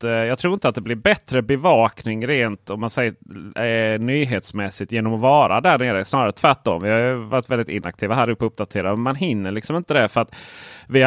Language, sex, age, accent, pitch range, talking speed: Swedish, male, 30-49, native, 100-125 Hz, 190 wpm